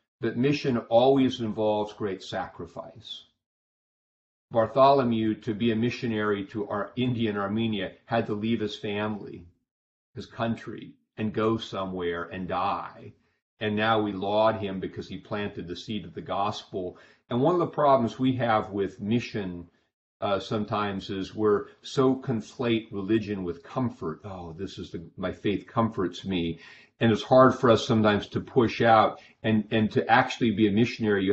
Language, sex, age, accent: English, male, 50-69, American